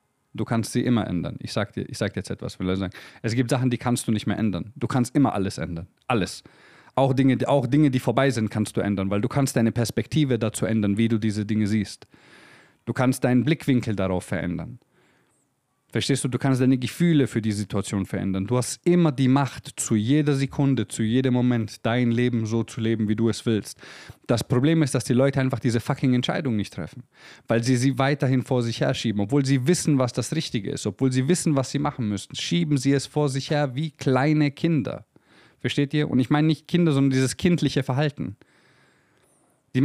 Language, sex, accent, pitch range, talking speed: German, male, German, 115-145 Hz, 215 wpm